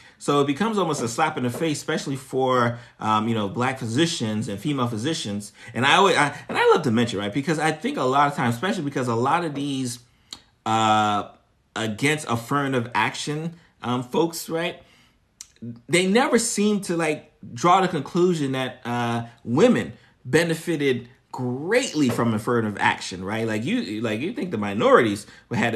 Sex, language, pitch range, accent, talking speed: male, English, 115-165 Hz, American, 170 wpm